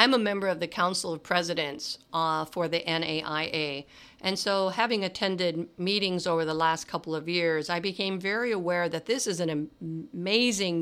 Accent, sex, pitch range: American, female, 165-215 Hz